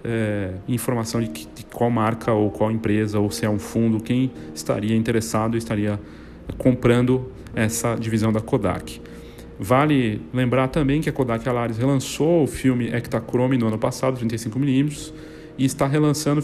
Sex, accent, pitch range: male, Brazilian, 115-135 Hz